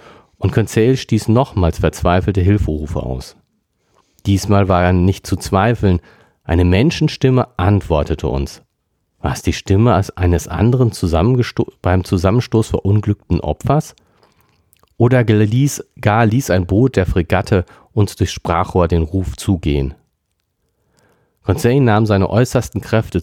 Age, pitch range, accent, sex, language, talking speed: 40-59, 90-110 Hz, German, male, German, 125 wpm